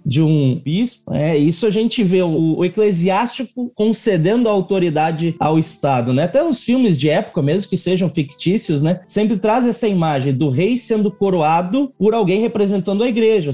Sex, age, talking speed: male, 20-39, 175 wpm